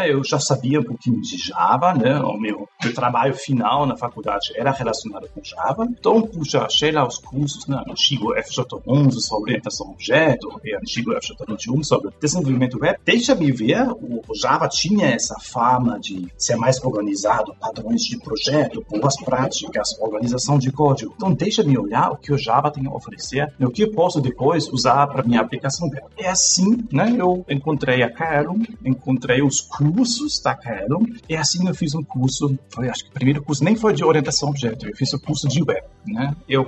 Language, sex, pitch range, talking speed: Portuguese, male, 125-175 Hz, 190 wpm